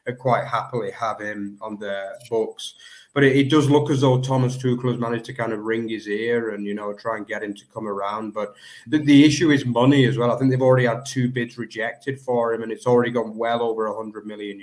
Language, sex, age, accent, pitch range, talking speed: English, male, 30-49, British, 105-125 Hz, 250 wpm